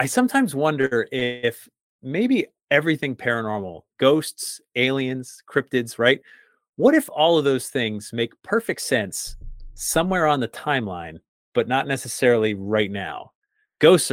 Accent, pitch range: American, 110-150 Hz